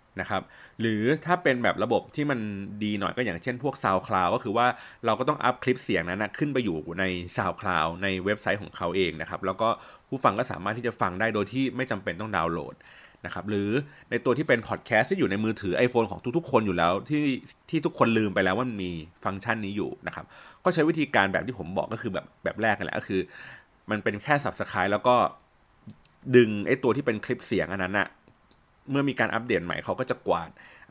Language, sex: Thai, male